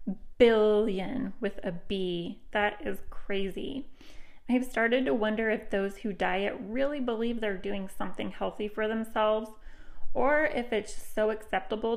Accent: American